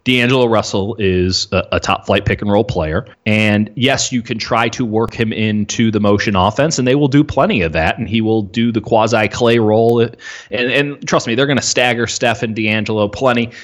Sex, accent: male, American